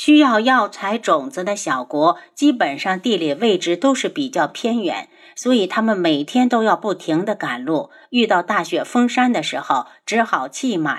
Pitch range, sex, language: 210-295 Hz, female, Chinese